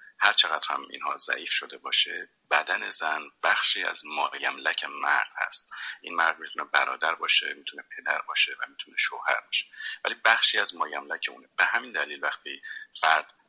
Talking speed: 165 wpm